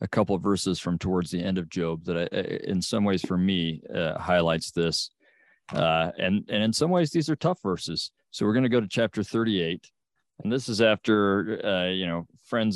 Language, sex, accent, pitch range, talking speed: English, male, American, 90-110 Hz, 220 wpm